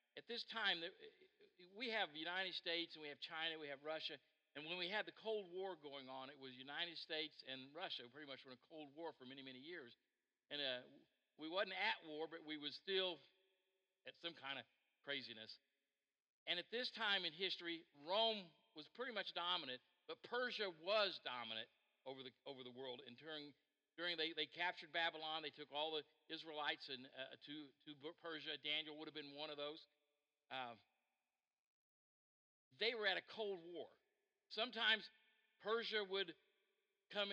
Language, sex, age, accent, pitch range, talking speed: English, male, 50-69, American, 150-195 Hz, 180 wpm